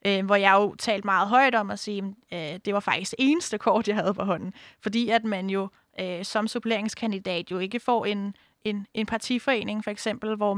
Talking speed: 195 wpm